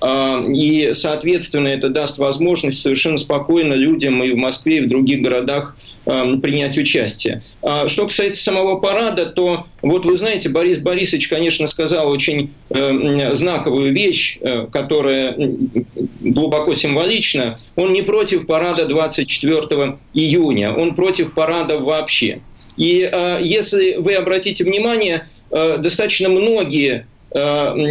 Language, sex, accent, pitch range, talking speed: Russian, male, native, 150-195 Hz, 115 wpm